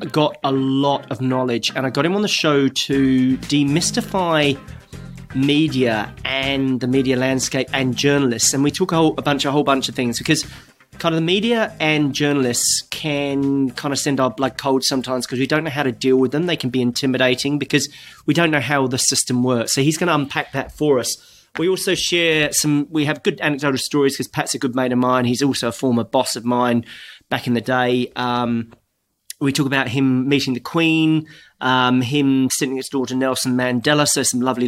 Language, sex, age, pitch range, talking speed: English, male, 30-49, 125-145 Hz, 205 wpm